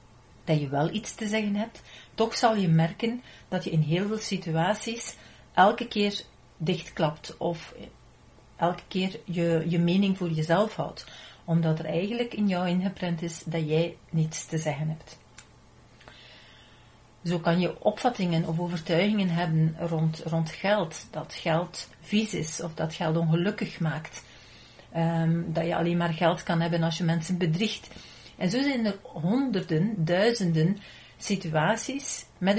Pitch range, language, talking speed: 160-205 Hz, Dutch, 150 wpm